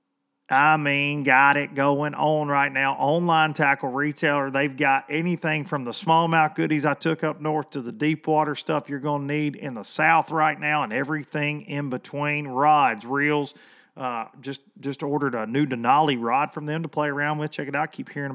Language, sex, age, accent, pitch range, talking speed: English, male, 40-59, American, 140-170 Hz, 200 wpm